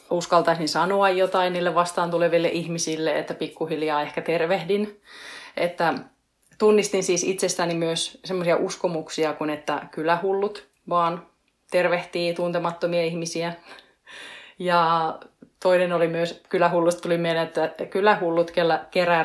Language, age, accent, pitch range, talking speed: Finnish, 30-49, native, 165-185 Hz, 110 wpm